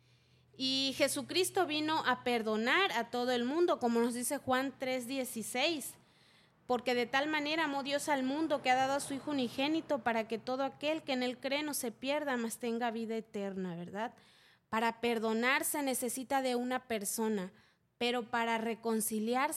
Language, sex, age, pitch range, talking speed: Spanish, female, 20-39, 230-290 Hz, 170 wpm